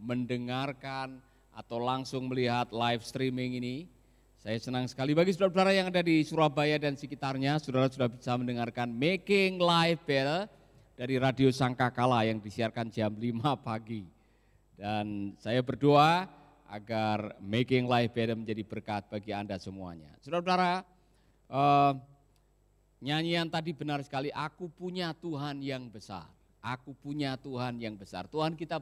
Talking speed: 130 wpm